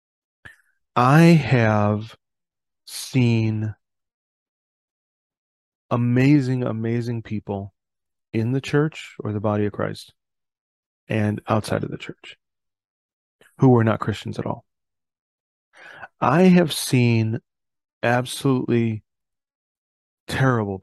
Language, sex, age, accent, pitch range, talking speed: English, male, 40-59, American, 105-120 Hz, 85 wpm